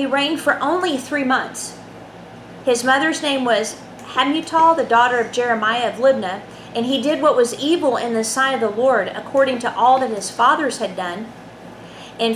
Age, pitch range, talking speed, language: 40-59, 225-290 Hz, 185 wpm, English